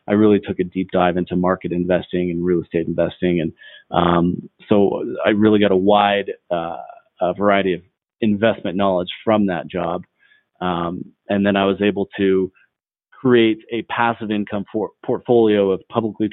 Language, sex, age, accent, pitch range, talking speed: English, male, 30-49, American, 95-110 Hz, 165 wpm